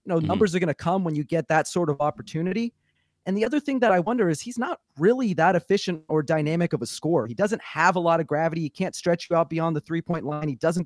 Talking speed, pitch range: 275 wpm, 150-195 Hz